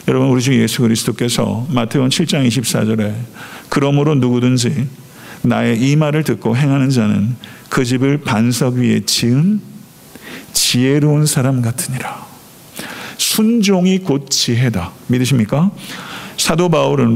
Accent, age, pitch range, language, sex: native, 50-69, 120-170 Hz, Korean, male